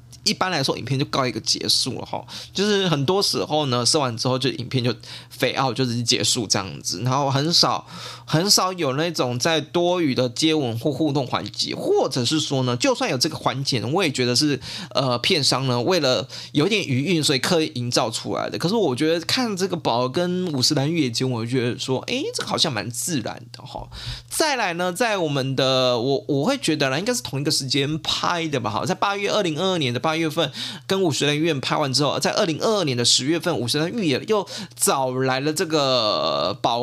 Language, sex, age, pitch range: Chinese, male, 20-39, 125-165 Hz